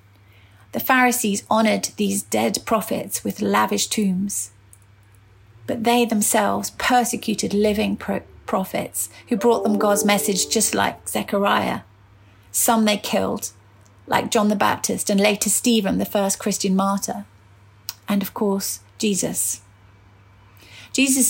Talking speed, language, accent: 120 wpm, English, British